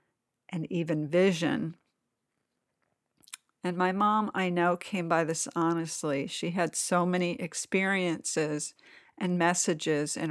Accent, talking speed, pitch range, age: American, 115 wpm, 165-190 Hz, 50-69